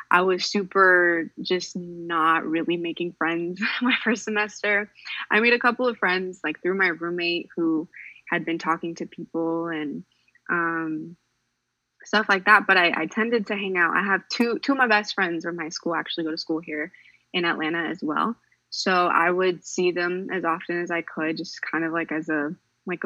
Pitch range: 165-205 Hz